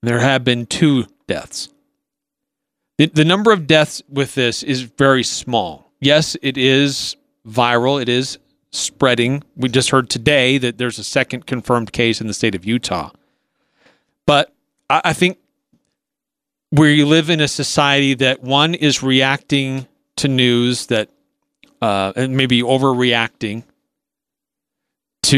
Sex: male